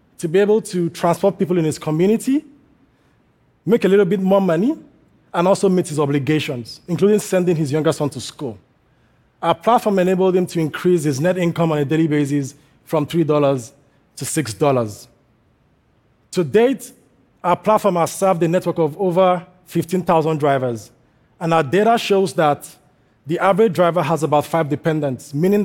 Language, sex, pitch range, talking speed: English, male, 145-185 Hz, 160 wpm